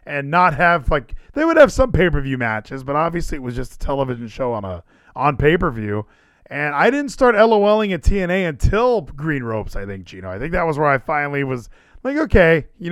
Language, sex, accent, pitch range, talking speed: English, male, American, 140-195 Hz, 230 wpm